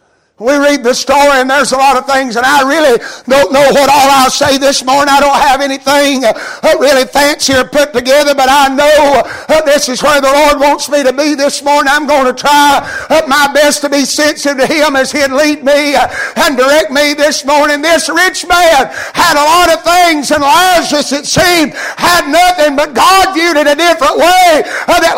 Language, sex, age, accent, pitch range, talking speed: English, male, 60-79, American, 245-300 Hz, 205 wpm